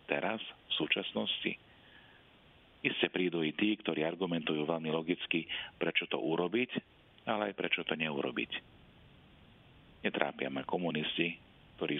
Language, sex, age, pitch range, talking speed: Slovak, male, 40-59, 80-100 Hz, 115 wpm